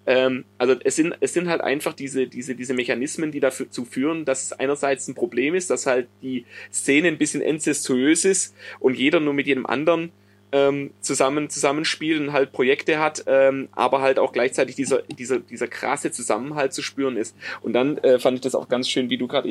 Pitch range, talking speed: 125-150 Hz, 205 wpm